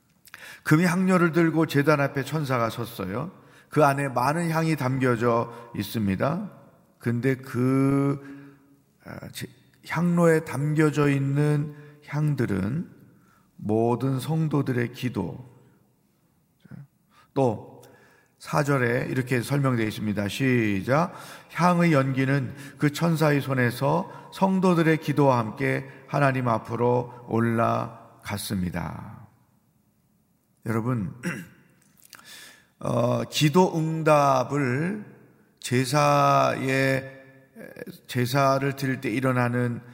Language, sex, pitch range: Korean, male, 120-150 Hz